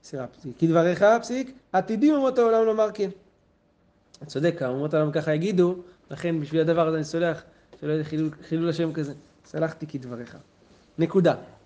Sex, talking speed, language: male, 150 wpm, Hebrew